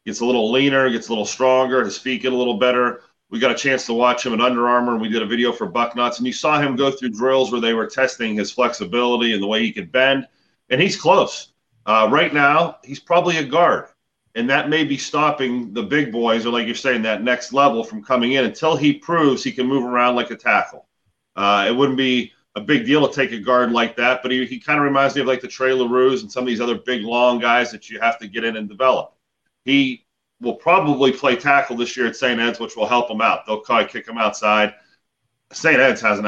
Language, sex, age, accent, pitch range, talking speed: English, male, 40-59, American, 115-135 Hz, 250 wpm